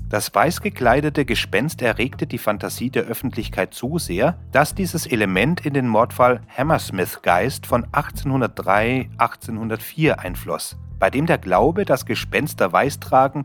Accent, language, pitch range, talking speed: German, German, 105-145 Hz, 120 wpm